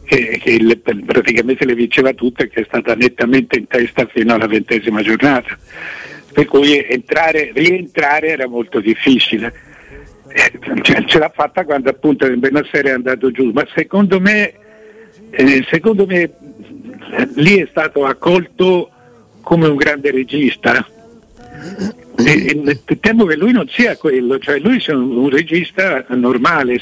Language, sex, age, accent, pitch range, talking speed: Italian, male, 60-79, native, 125-175 Hz, 145 wpm